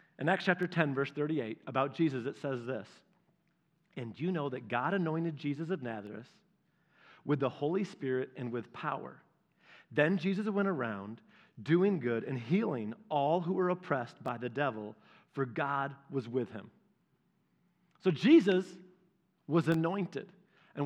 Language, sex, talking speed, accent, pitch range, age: English, male, 150 wpm, American, 150-190 Hz, 40-59